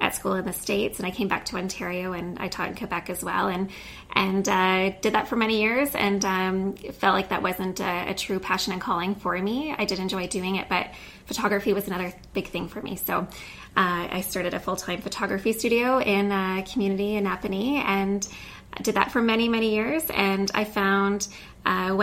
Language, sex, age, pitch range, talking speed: English, female, 20-39, 185-210 Hz, 205 wpm